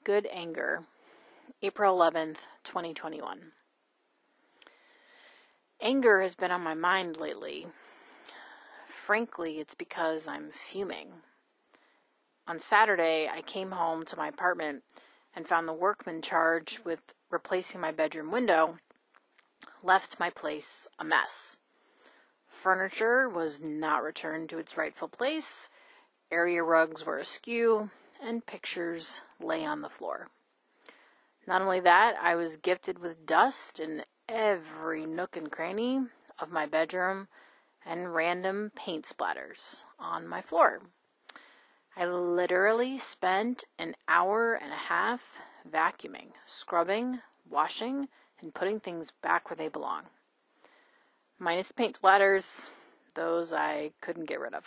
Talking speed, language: 120 wpm, English